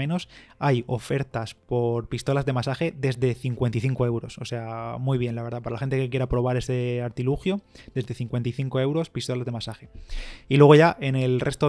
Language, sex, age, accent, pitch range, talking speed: Spanish, male, 20-39, Spanish, 120-135 Hz, 185 wpm